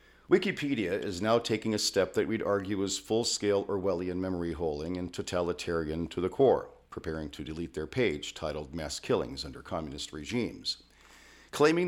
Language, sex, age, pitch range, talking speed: English, male, 50-69, 85-105 Hz, 150 wpm